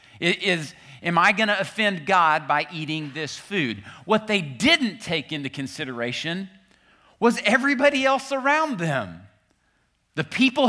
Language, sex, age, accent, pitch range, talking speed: English, male, 50-69, American, 150-225 Hz, 135 wpm